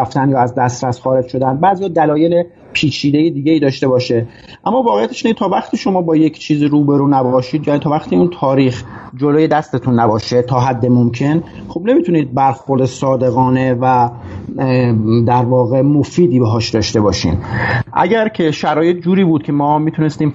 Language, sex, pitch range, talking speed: Persian, male, 125-150 Hz, 155 wpm